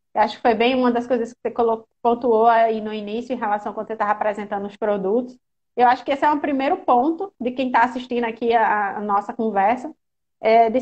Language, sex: Portuguese, female